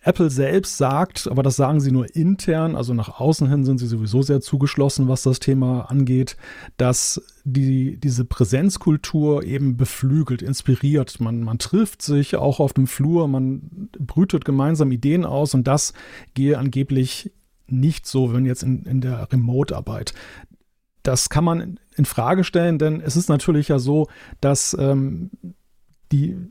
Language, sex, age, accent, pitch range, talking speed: German, male, 40-59, German, 130-155 Hz, 155 wpm